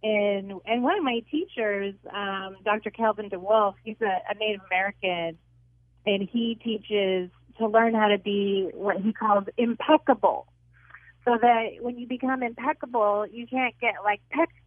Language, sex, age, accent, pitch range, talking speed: English, female, 30-49, American, 190-235 Hz, 155 wpm